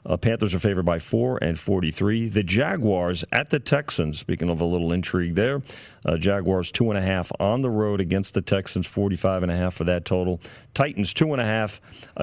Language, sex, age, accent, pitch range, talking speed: English, male, 40-59, American, 90-115 Hz, 165 wpm